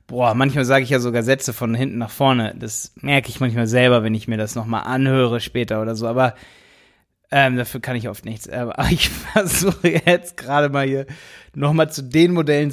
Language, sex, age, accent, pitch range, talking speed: German, male, 20-39, German, 130-175 Hz, 205 wpm